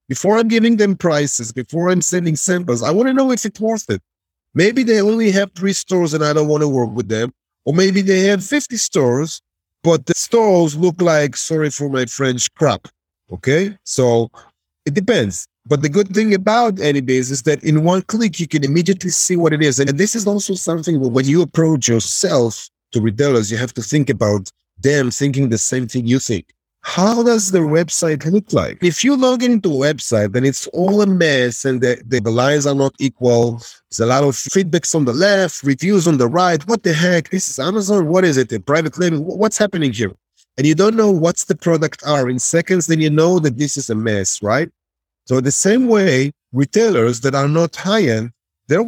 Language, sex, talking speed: English, male, 210 wpm